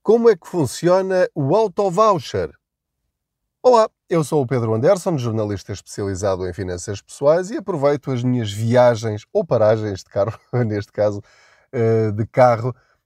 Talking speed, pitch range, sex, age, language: 140 wpm, 95-130 Hz, male, 20-39, Portuguese